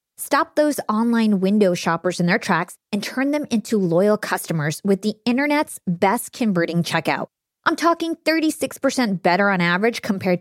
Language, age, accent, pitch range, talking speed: English, 20-39, American, 185-255 Hz, 155 wpm